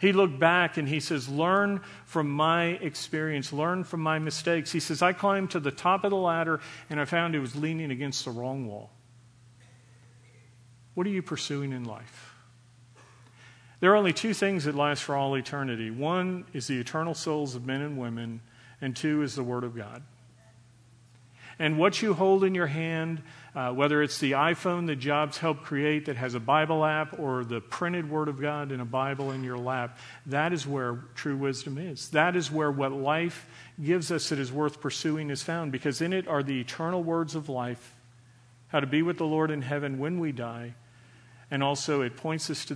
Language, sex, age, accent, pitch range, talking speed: English, male, 40-59, American, 125-160 Hz, 200 wpm